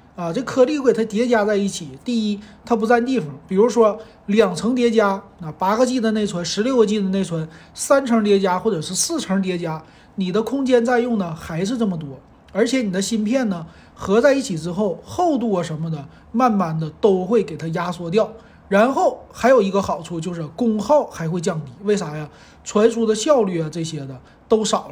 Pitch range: 165-230 Hz